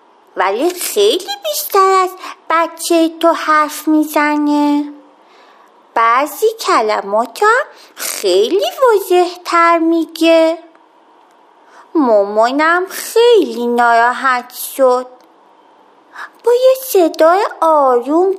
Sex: female